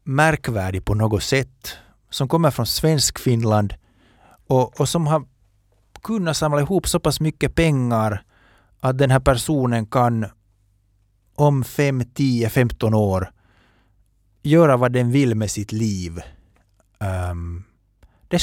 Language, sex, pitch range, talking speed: Finnish, male, 100-135 Hz, 125 wpm